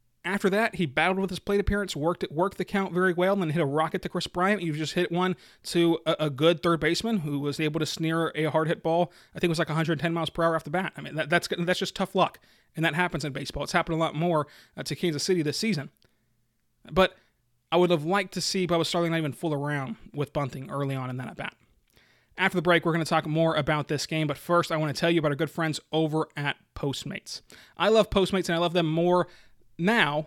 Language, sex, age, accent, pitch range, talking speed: English, male, 30-49, American, 150-180 Hz, 260 wpm